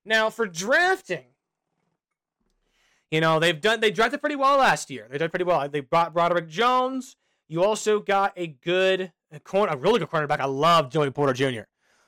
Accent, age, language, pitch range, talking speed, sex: American, 30-49, English, 160-235 Hz, 185 wpm, male